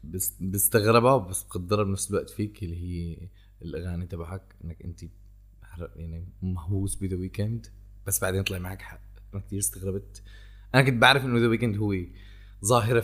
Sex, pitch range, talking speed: male, 100-155 Hz, 145 wpm